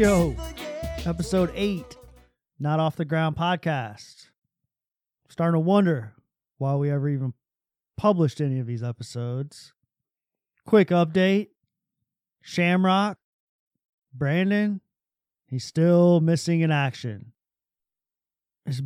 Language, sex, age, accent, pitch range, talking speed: English, male, 30-49, American, 130-175 Hz, 90 wpm